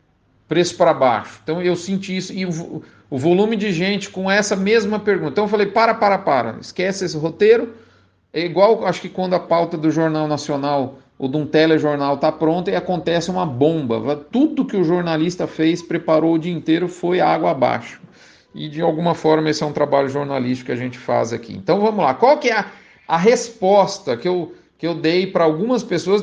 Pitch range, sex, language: 155-195 Hz, male, Portuguese